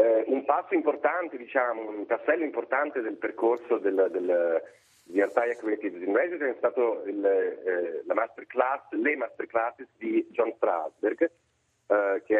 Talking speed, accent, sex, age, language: 150 wpm, native, male, 40-59, Italian